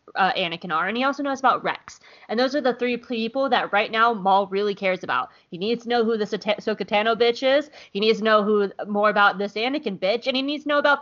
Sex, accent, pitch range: female, American, 185-245 Hz